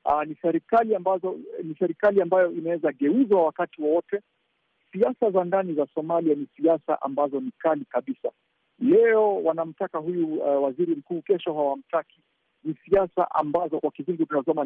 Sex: male